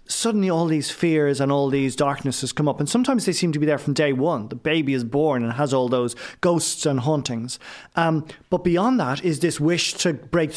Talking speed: 225 wpm